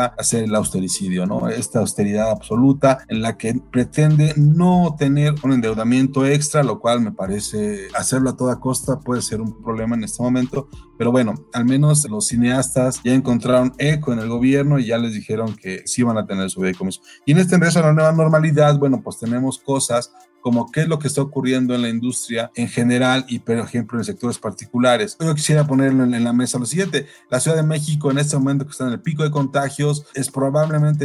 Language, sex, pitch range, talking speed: Spanish, male, 115-140 Hz, 210 wpm